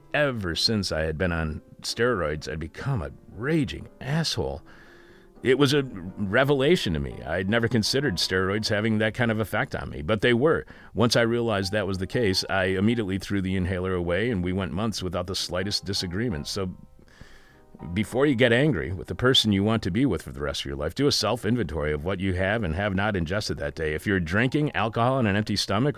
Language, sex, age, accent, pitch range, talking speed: English, male, 40-59, American, 95-115 Hz, 215 wpm